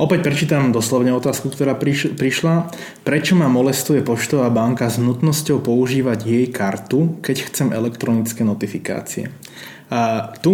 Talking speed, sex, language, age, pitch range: 125 wpm, male, Slovak, 20-39, 115-135 Hz